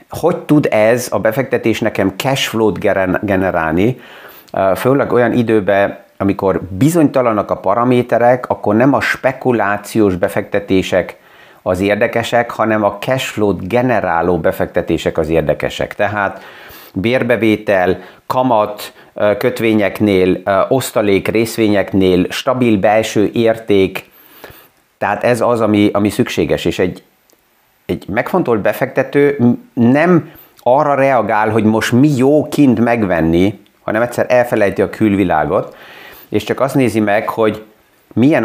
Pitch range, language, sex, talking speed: 105-125 Hz, Hungarian, male, 110 wpm